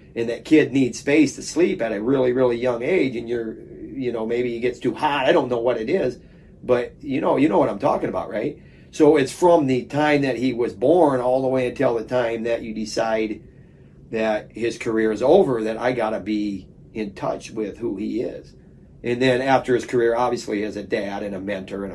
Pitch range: 105-125 Hz